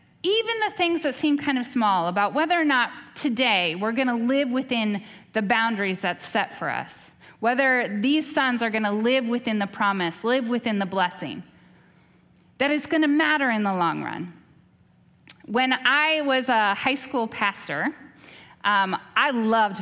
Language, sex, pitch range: English, female, 200-275 Hz